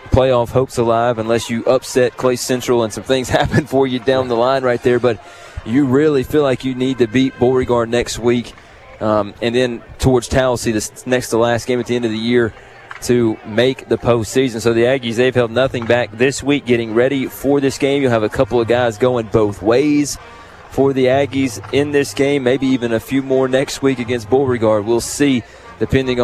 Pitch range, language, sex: 115-130 Hz, English, male